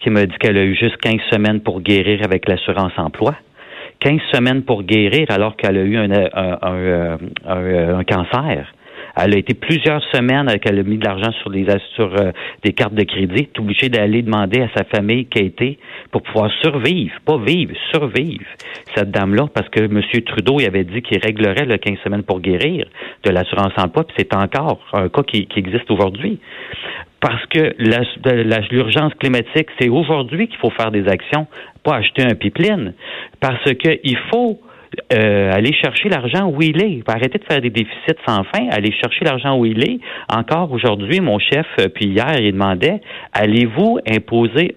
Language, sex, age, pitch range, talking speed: French, male, 50-69, 105-150 Hz, 180 wpm